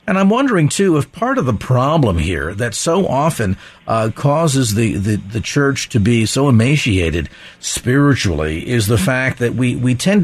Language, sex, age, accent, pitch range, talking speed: English, male, 50-69, American, 120-160 Hz, 180 wpm